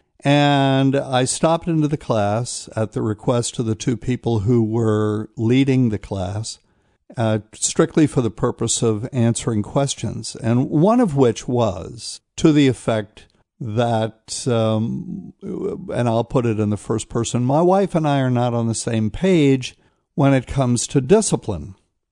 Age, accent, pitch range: 60-79, American, 110-135 Hz